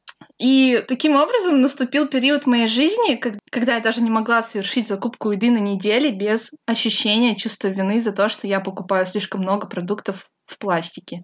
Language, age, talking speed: Russian, 20-39, 170 wpm